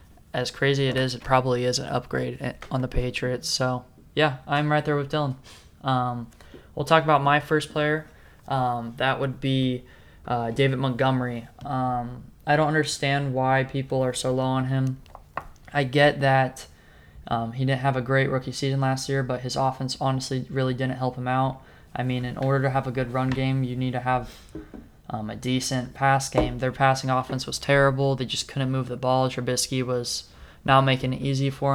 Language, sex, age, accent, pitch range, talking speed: English, male, 20-39, American, 125-135 Hz, 195 wpm